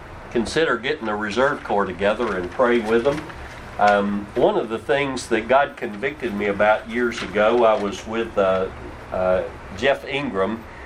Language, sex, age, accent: English, male, 50-69, American